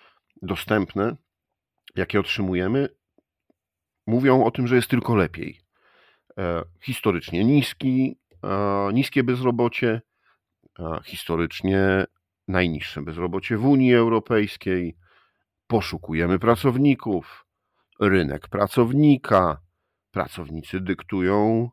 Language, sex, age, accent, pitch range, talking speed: Polish, male, 50-69, native, 85-115 Hz, 70 wpm